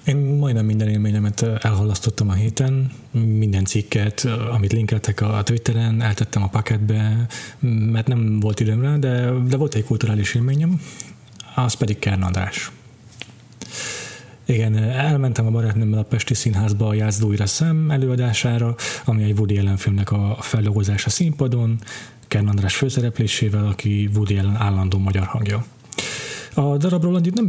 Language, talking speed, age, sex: Hungarian, 130 wpm, 30-49, male